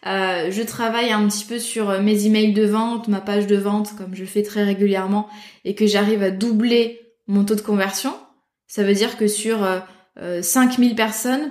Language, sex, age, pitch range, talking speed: French, female, 20-39, 205-240 Hz, 200 wpm